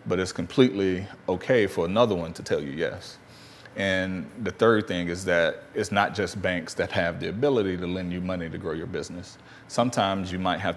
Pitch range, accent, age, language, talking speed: 85-95 Hz, American, 30-49, English, 205 wpm